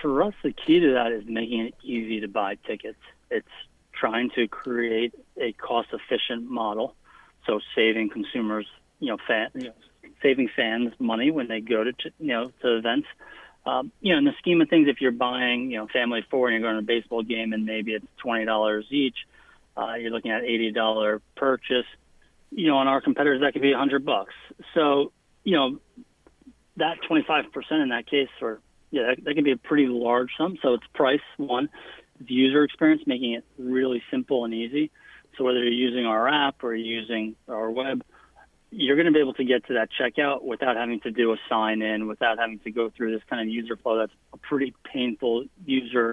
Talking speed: 205 wpm